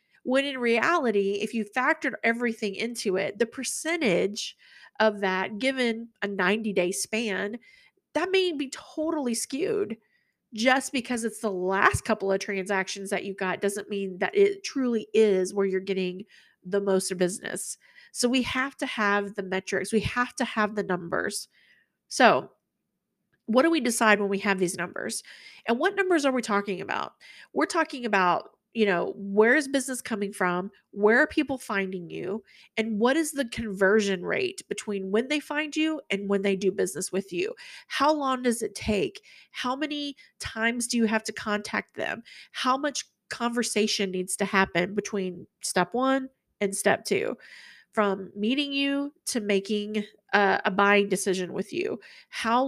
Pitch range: 200-265 Hz